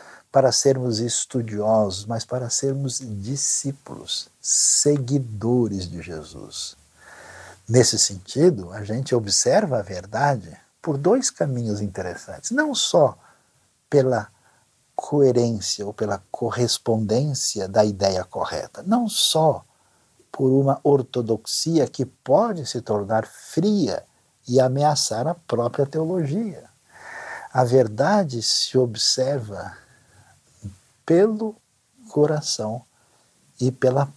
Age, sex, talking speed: 60-79, male, 95 wpm